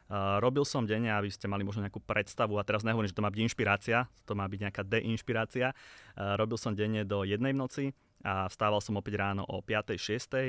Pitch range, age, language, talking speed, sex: 100-110 Hz, 20-39, Slovak, 215 wpm, male